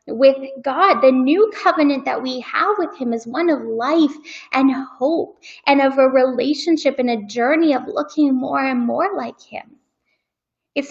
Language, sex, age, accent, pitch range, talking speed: English, female, 10-29, American, 235-280 Hz, 170 wpm